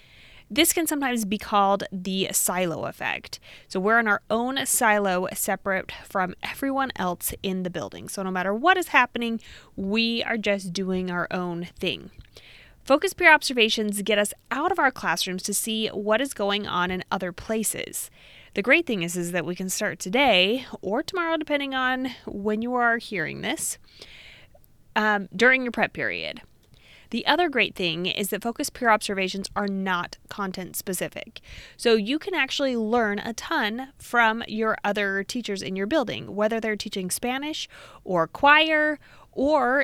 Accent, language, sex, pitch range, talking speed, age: American, English, female, 190-240 Hz, 165 wpm, 20-39